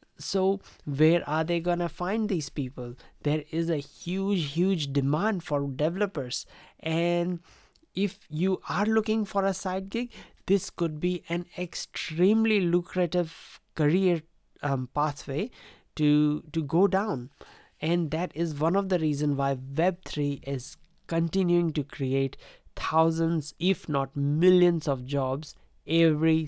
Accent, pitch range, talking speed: Indian, 145-185 Hz, 135 wpm